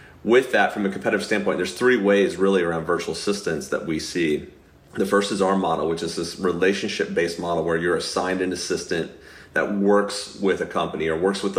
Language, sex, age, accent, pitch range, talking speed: English, male, 30-49, American, 85-100 Hz, 200 wpm